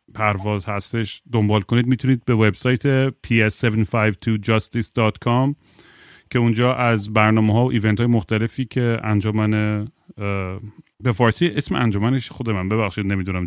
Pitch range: 105-120 Hz